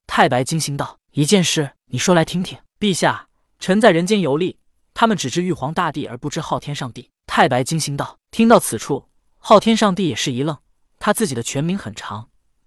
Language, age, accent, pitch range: Chinese, 20-39, native, 135-195 Hz